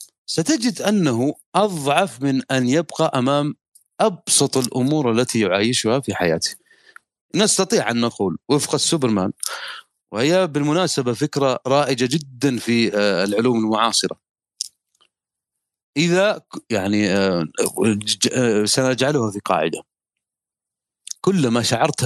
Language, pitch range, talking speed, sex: Arabic, 110-145 Hz, 90 wpm, male